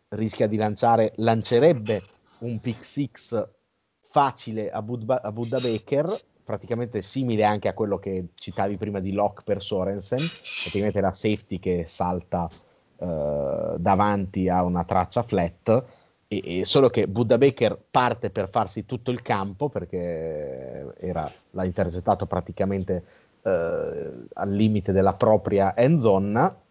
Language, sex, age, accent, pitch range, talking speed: Italian, male, 30-49, native, 105-130 Hz, 135 wpm